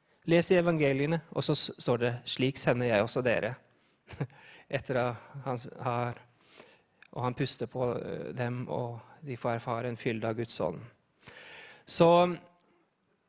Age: 20-39